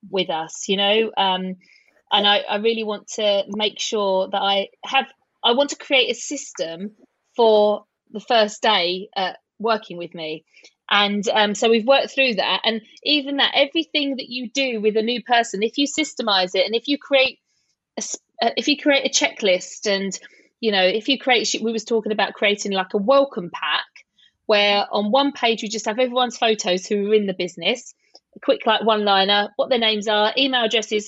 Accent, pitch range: British, 200-260 Hz